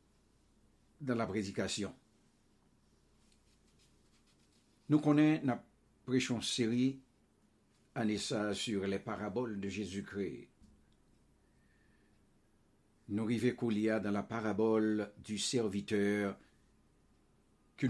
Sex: male